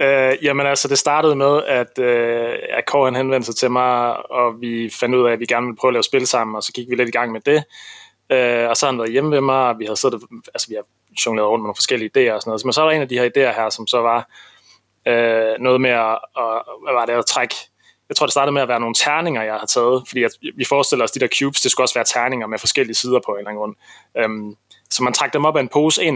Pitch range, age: 120-140 Hz, 20-39